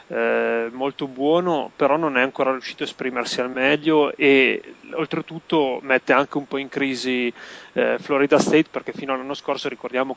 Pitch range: 125-140 Hz